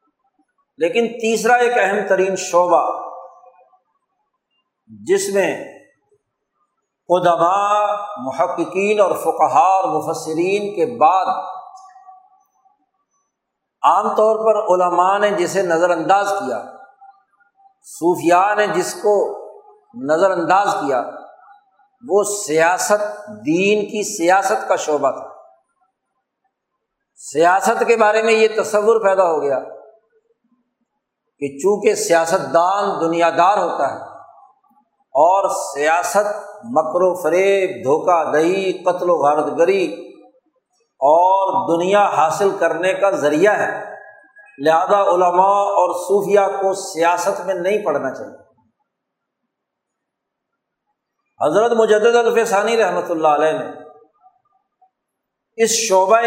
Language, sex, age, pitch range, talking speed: Urdu, male, 50-69, 180-235 Hz, 100 wpm